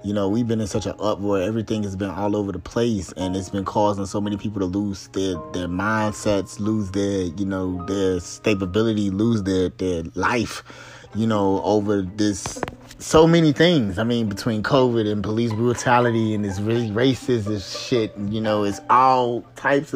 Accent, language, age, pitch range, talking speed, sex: American, English, 20-39, 95-110 Hz, 185 wpm, male